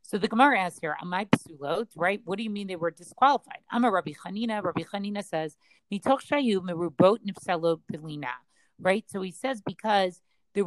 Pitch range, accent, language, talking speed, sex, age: 170-215 Hz, American, English, 170 wpm, female, 40-59